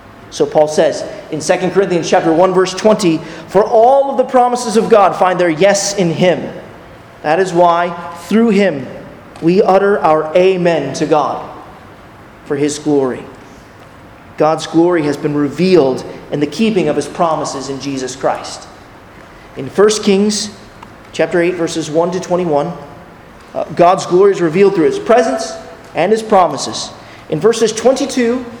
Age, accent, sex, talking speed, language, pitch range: 30-49, American, male, 155 wpm, English, 160-215 Hz